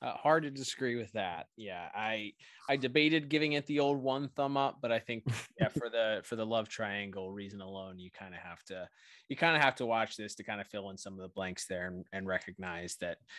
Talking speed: 240 wpm